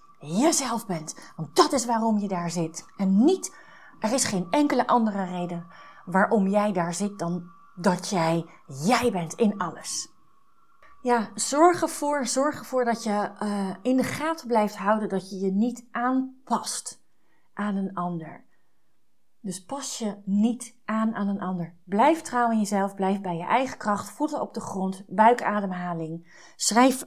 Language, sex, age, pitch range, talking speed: Dutch, female, 30-49, 195-250 Hz, 160 wpm